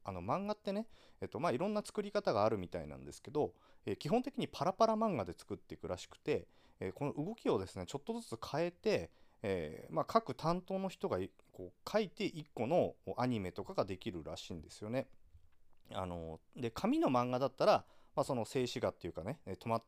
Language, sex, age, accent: Japanese, male, 40-59, native